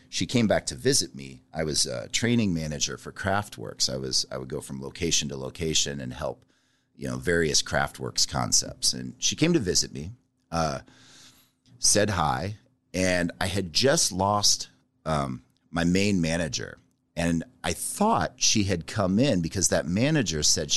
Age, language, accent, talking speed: 40-59, English, American, 170 wpm